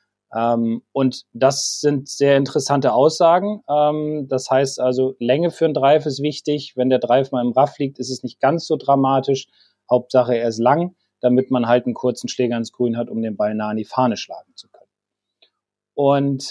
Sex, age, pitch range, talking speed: male, 30-49, 125-155 Hz, 190 wpm